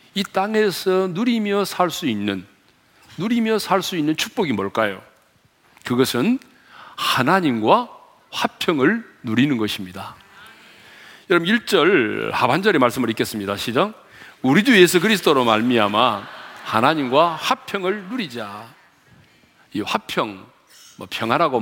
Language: Korean